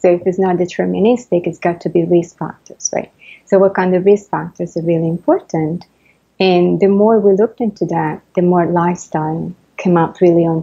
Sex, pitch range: female, 170-190 Hz